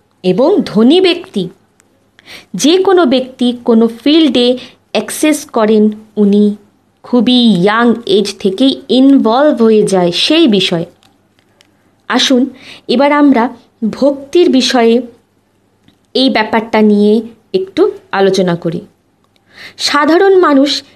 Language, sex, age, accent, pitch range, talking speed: Bengali, female, 20-39, native, 205-280 Hz, 95 wpm